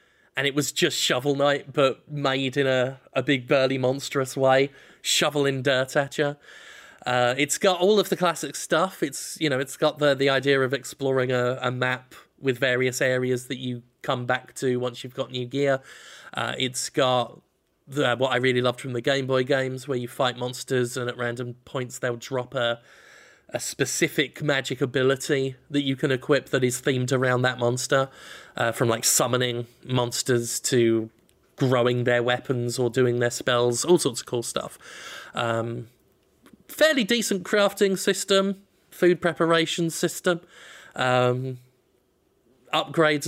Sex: male